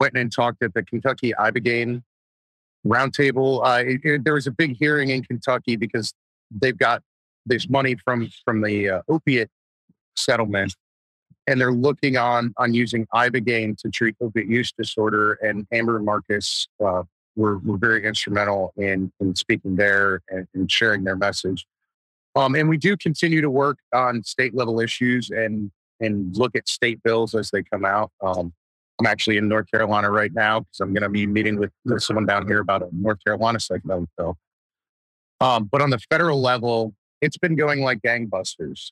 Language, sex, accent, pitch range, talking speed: English, male, American, 105-125 Hz, 175 wpm